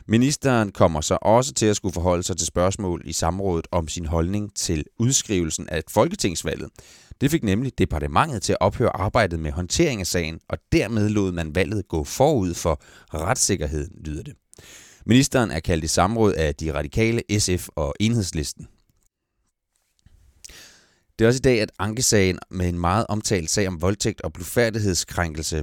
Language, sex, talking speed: Danish, male, 165 wpm